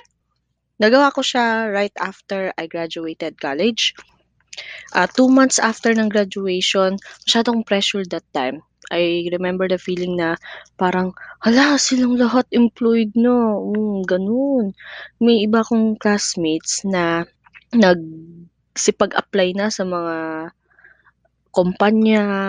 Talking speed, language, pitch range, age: 115 wpm, English, 175-225 Hz, 20-39